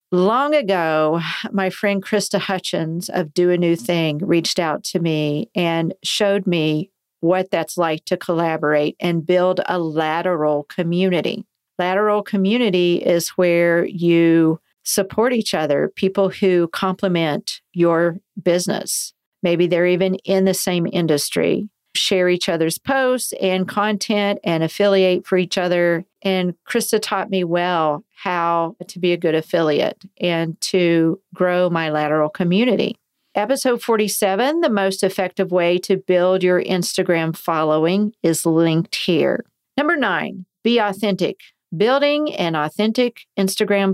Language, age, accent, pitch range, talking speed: English, 50-69, American, 170-200 Hz, 135 wpm